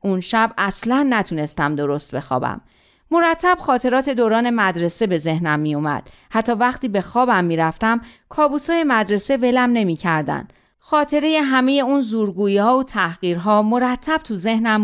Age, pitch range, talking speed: 40-59, 165-250 Hz, 135 wpm